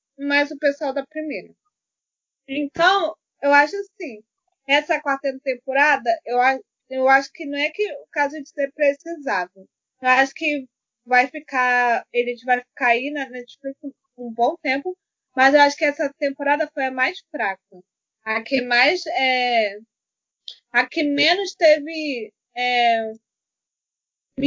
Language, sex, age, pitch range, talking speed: Portuguese, female, 20-39, 240-300 Hz, 140 wpm